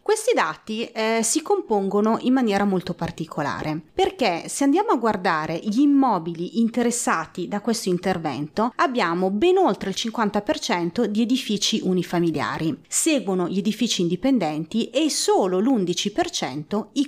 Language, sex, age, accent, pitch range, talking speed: Italian, female, 30-49, native, 175-230 Hz, 125 wpm